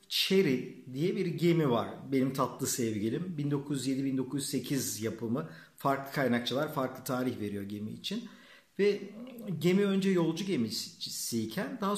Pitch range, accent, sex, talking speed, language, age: 130-195 Hz, native, male, 115 wpm, Turkish, 50-69